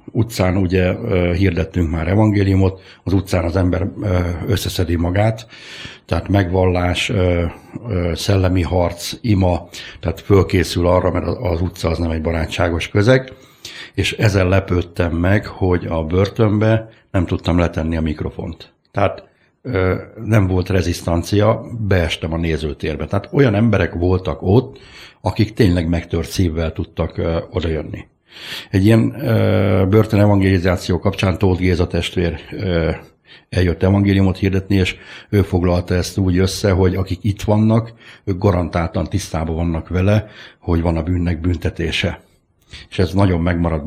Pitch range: 85-105 Hz